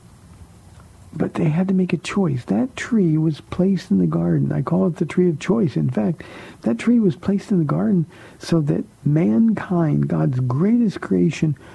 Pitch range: 135-180 Hz